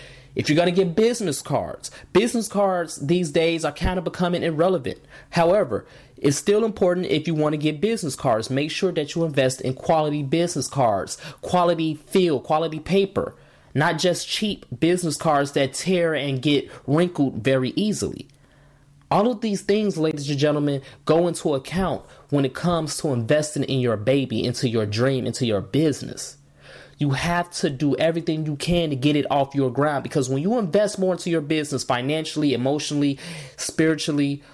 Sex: male